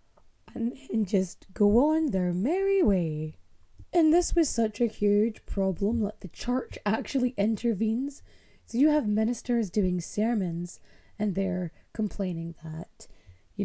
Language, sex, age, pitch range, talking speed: English, female, 20-39, 165-245 Hz, 135 wpm